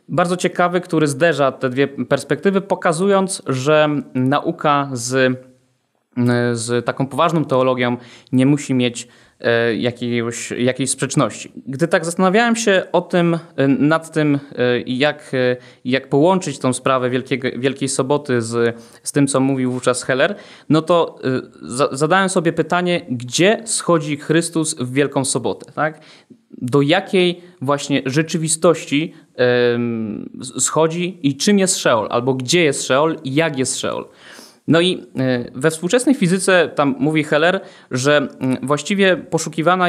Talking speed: 120 wpm